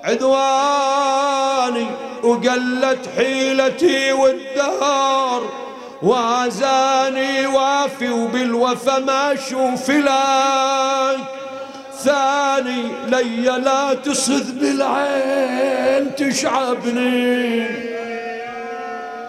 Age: 40-59